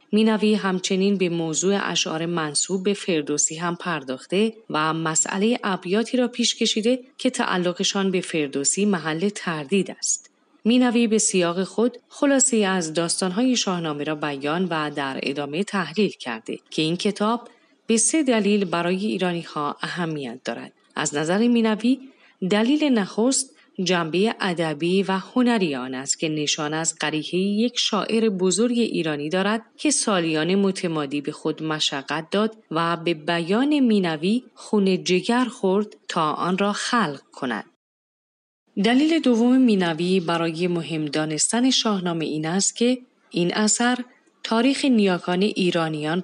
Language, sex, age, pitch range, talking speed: Persian, female, 30-49, 165-225 Hz, 130 wpm